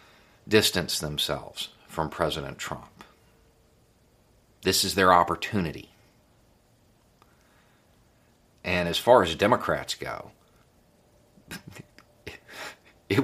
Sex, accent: male, American